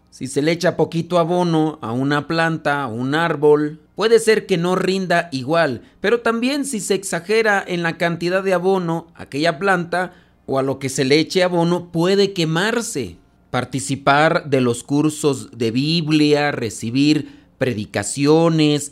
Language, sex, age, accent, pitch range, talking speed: Spanish, male, 40-59, Mexican, 140-180 Hz, 150 wpm